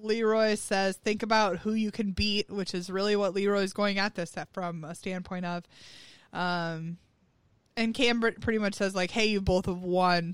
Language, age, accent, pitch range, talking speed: English, 20-39, American, 175-220 Hz, 190 wpm